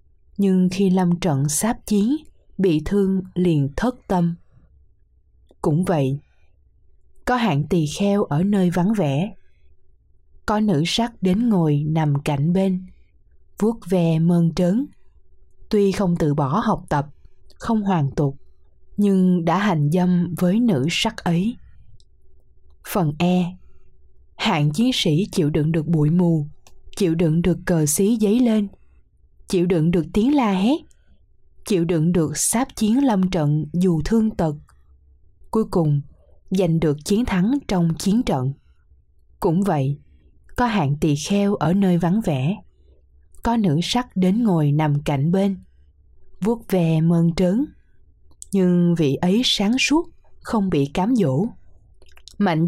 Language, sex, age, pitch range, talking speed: Vietnamese, female, 20-39, 145-200 Hz, 140 wpm